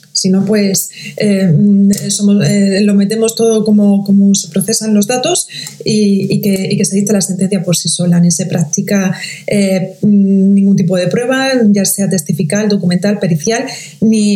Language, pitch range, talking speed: Spanish, 185-210 Hz, 170 wpm